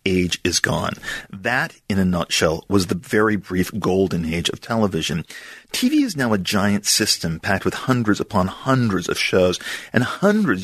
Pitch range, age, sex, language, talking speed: 90-110 Hz, 40-59, male, English, 170 wpm